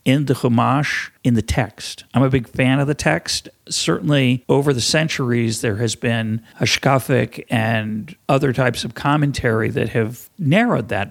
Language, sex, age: English, male, 50-69